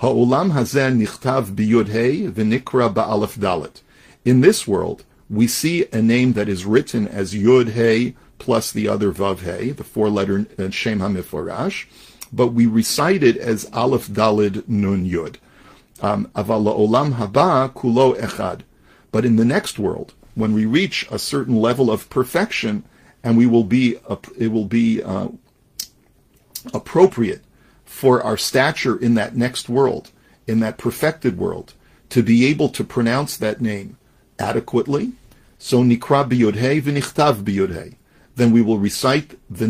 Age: 50-69